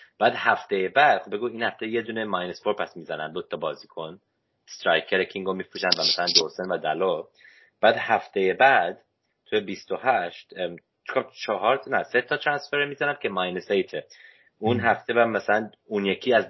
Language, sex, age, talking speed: Persian, male, 30-49, 165 wpm